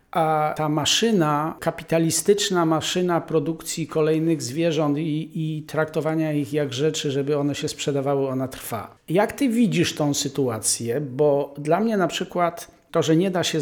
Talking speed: 155 wpm